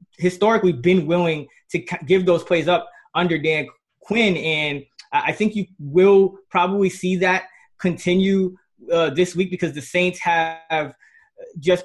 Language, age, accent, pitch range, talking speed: English, 20-39, American, 150-175 Hz, 140 wpm